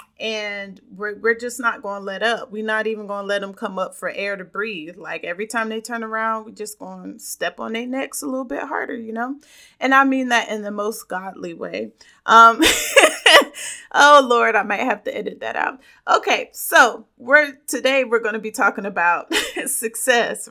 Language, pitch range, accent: English, 210-260 Hz, American